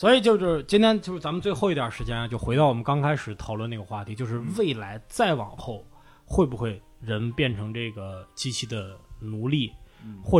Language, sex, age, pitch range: Chinese, male, 20-39, 110-160 Hz